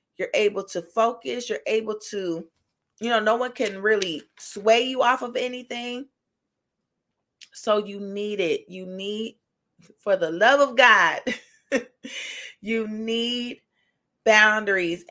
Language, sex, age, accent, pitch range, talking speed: English, female, 30-49, American, 205-265 Hz, 125 wpm